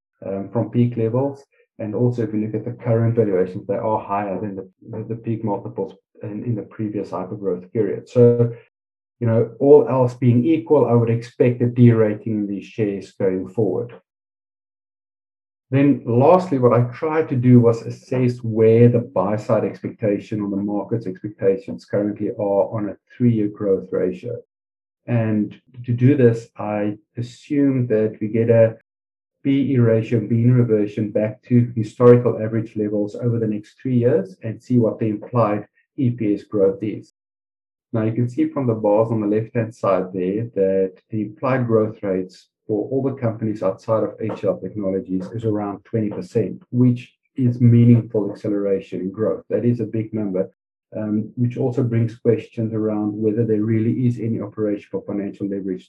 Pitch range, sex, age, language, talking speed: 105-120 Hz, male, 50-69, English, 165 wpm